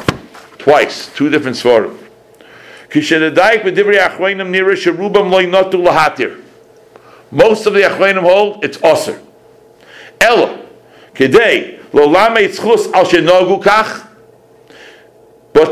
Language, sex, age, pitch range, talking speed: English, male, 60-79, 185-225 Hz, 100 wpm